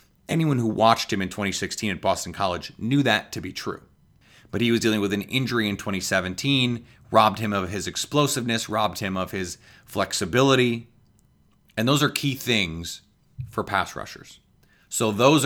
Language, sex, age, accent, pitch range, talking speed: English, male, 30-49, American, 100-120 Hz, 165 wpm